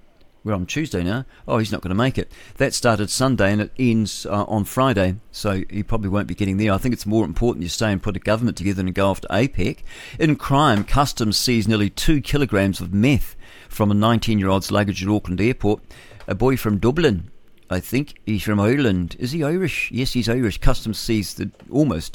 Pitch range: 100-120 Hz